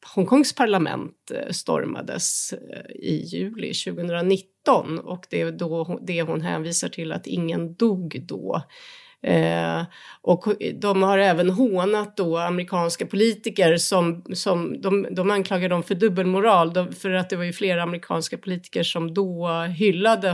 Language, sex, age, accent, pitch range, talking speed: Swedish, female, 30-49, native, 170-195 Hz, 135 wpm